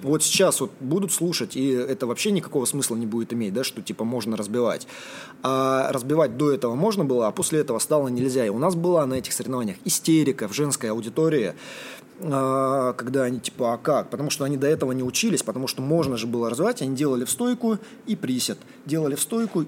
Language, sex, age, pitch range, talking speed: Russian, male, 20-39, 125-165 Hz, 205 wpm